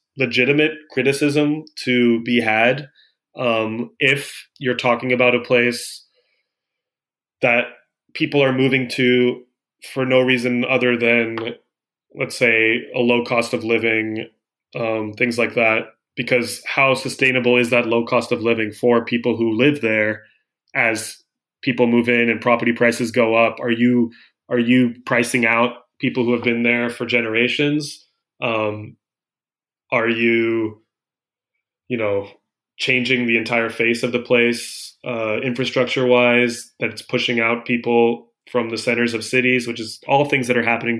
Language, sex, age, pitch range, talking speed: English, male, 20-39, 115-125 Hz, 145 wpm